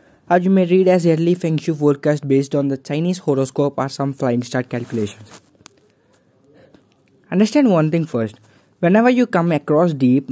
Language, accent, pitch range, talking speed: English, Indian, 130-170 Hz, 165 wpm